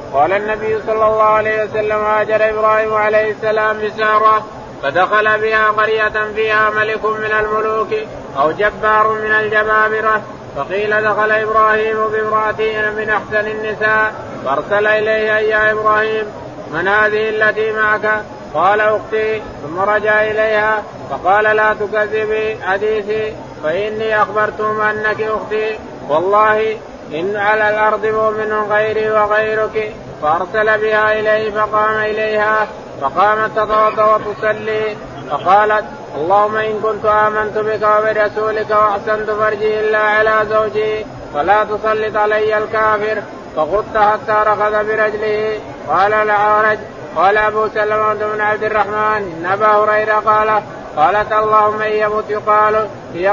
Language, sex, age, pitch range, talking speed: Arabic, male, 30-49, 210-215 Hz, 115 wpm